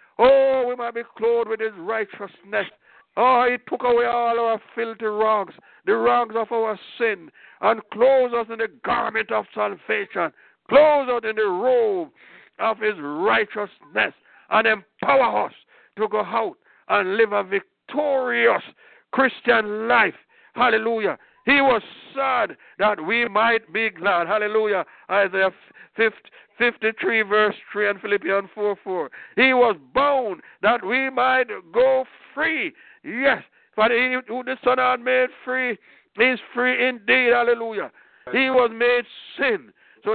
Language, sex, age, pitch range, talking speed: English, male, 60-79, 205-255 Hz, 140 wpm